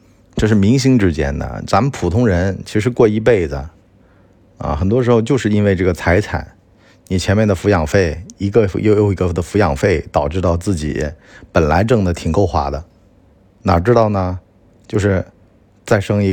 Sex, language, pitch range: male, Chinese, 90-105 Hz